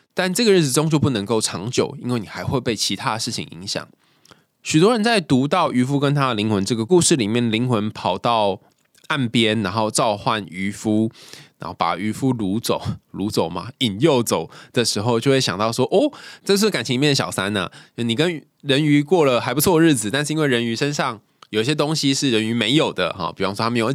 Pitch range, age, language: 115-160 Hz, 20-39, Chinese